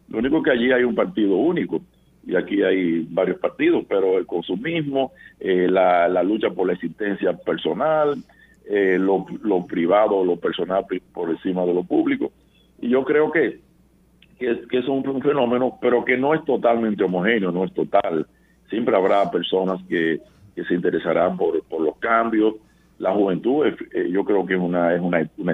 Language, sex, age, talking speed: Spanish, male, 50-69, 185 wpm